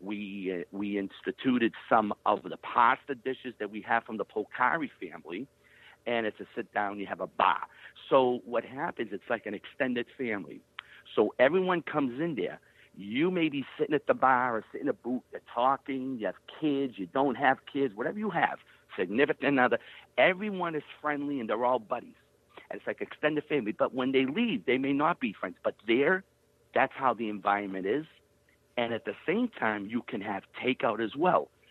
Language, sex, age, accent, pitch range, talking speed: English, male, 50-69, American, 105-140 Hz, 195 wpm